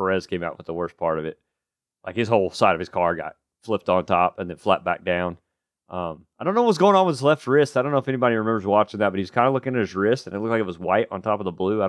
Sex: male